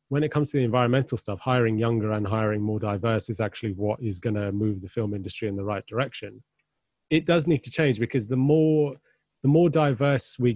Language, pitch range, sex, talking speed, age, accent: English, 110-140 Hz, male, 220 wpm, 30-49, British